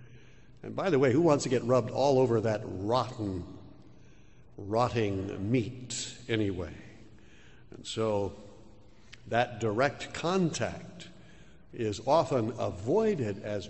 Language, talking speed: English, 110 wpm